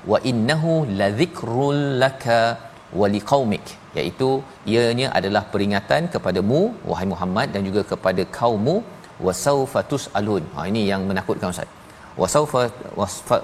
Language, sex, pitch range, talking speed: Malayalam, male, 105-130 Hz, 120 wpm